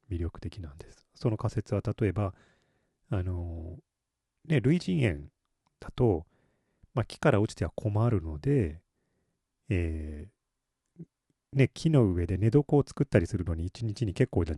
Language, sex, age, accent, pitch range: Japanese, male, 40-59, native, 90-125 Hz